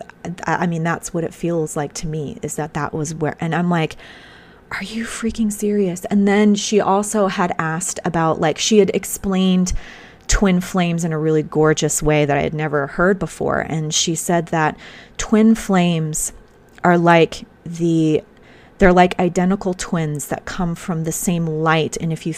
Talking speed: 180 wpm